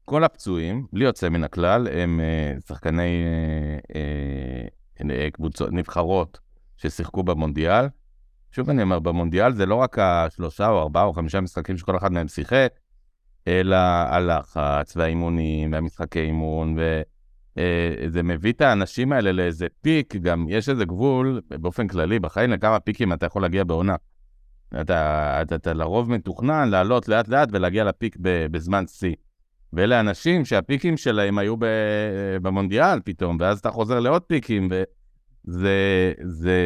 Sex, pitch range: male, 80-105 Hz